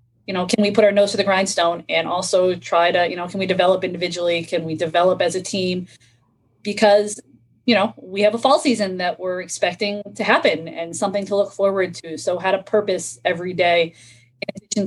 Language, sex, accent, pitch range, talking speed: English, female, American, 175-215 Hz, 215 wpm